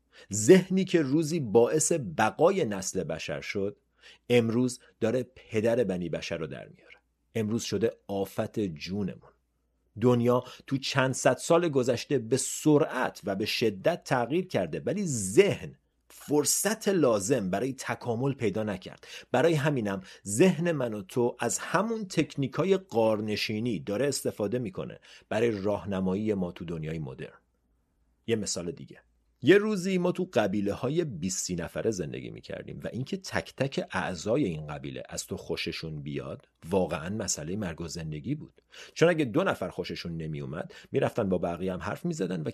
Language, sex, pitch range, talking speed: Persian, male, 95-150 Hz, 140 wpm